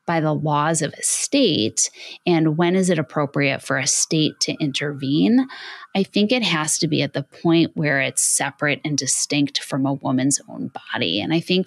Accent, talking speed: American, 195 wpm